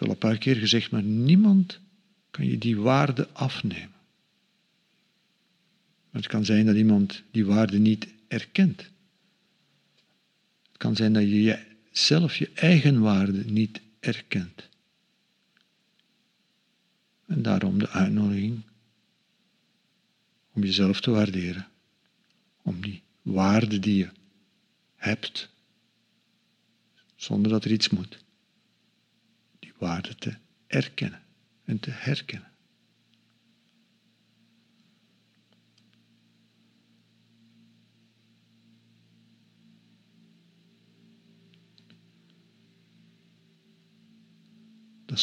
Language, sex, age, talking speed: Dutch, male, 50-69, 80 wpm